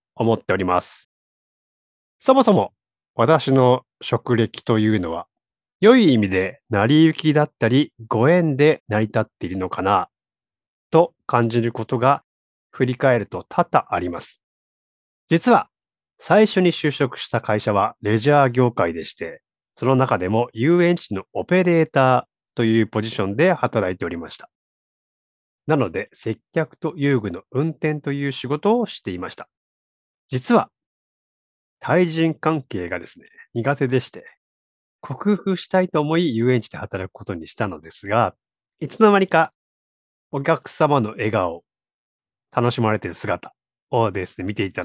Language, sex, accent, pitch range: Japanese, male, native, 105-150 Hz